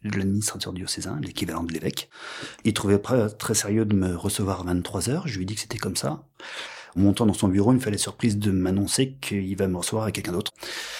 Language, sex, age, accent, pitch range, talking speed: French, male, 30-49, French, 95-120 Hz, 235 wpm